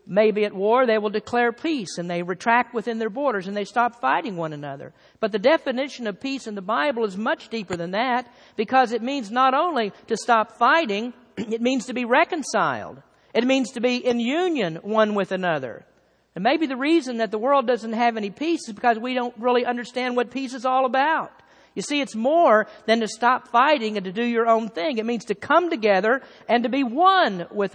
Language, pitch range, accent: English, 185-250 Hz, American